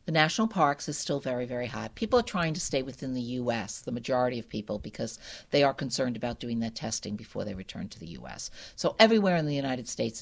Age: 50-69